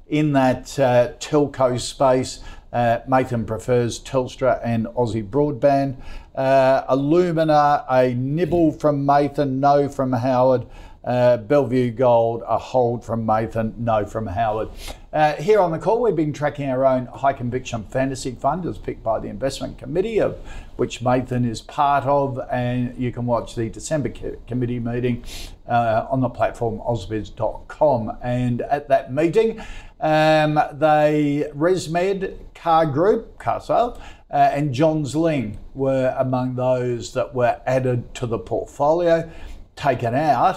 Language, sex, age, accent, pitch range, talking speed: English, male, 50-69, Australian, 115-145 Hz, 140 wpm